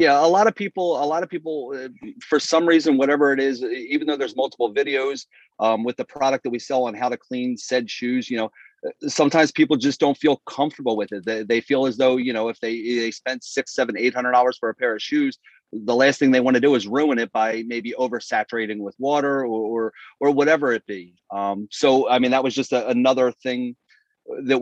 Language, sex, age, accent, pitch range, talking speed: English, male, 30-49, American, 120-150 Hz, 230 wpm